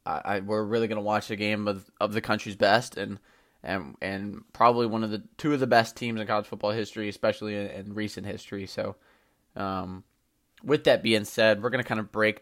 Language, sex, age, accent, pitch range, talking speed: English, male, 20-39, American, 105-115 Hz, 215 wpm